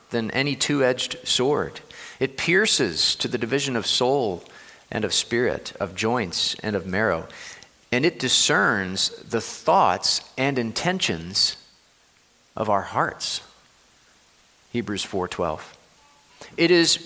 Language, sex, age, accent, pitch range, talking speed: English, male, 40-59, American, 95-130 Hz, 115 wpm